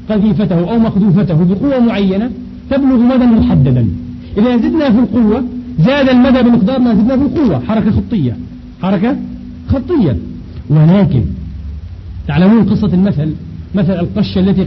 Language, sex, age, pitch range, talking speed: Arabic, male, 40-59, 155-245 Hz, 125 wpm